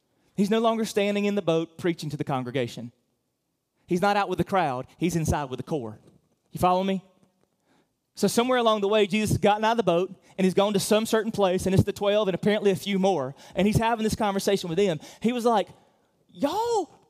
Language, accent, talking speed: English, American, 225 wpm